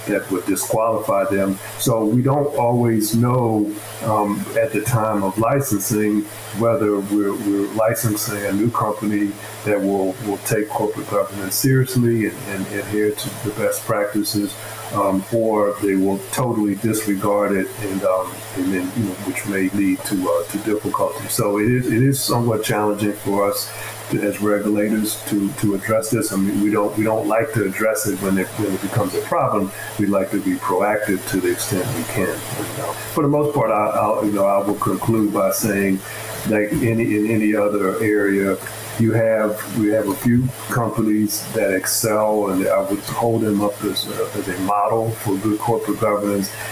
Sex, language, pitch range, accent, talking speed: male, English, 100-110 Hz, American, 180 wpm